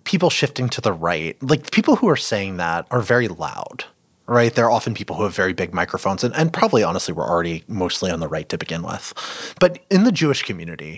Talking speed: 225 wpm